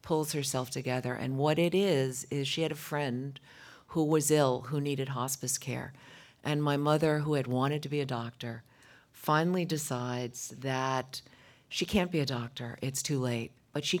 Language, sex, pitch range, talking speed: English, female, 125-155 Hz, 180 wpm